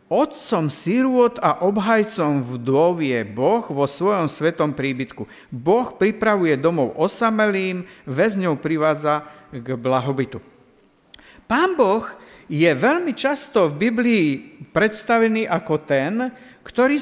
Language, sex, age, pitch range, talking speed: Slovak, male, 50-69, 155-225 Hz, 105 wpm